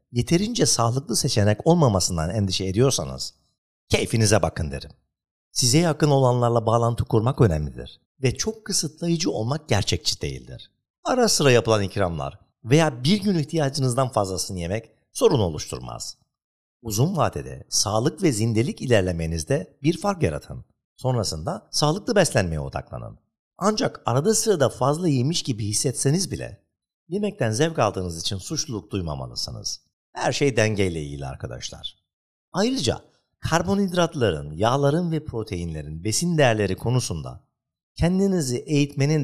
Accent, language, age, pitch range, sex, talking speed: native, Turkish, 50-69, 100-155 Hz, male, 115 wpm